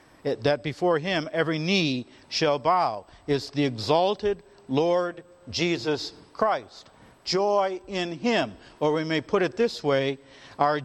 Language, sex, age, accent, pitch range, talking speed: English, male, 50-69, American, 140-195 Hz, 135 wpm